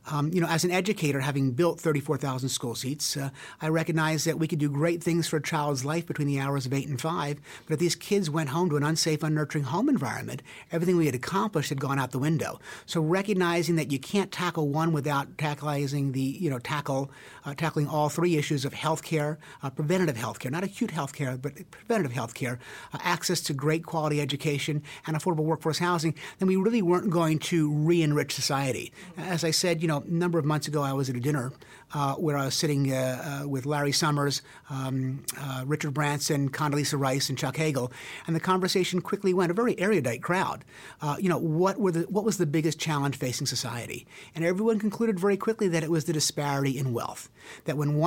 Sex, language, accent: male, English, American